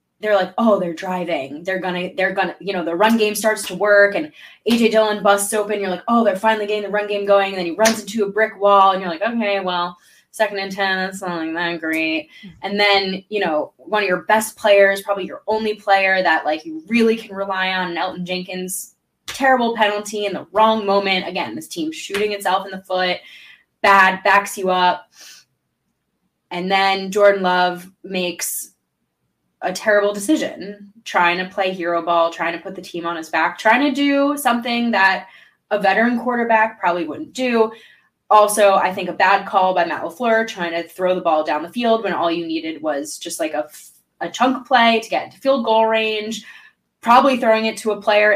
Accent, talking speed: American, 205 wpm